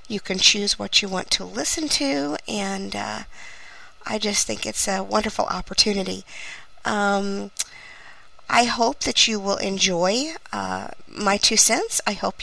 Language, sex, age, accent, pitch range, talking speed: English, female, 50-69, American, 195-235 Hz, 150 wpm